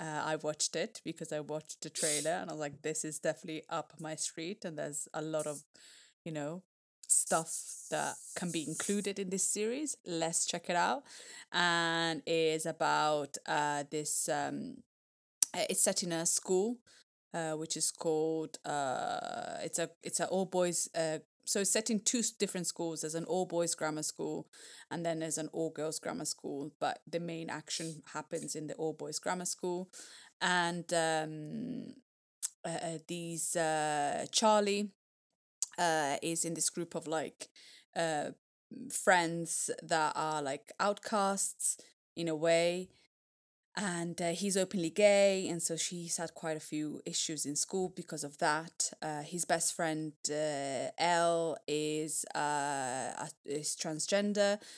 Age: 20-39